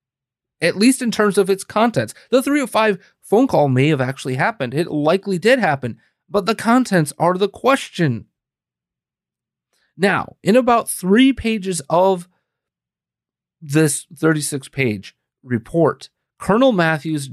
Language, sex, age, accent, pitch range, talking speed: English, male, 30-49, American, 130-190 Hz, 125 wpm